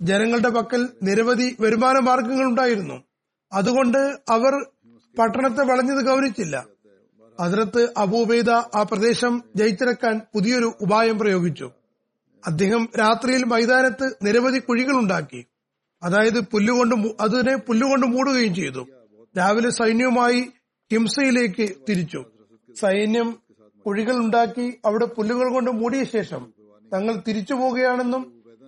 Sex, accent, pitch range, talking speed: male, native, 195-250 Hz, 90 wpm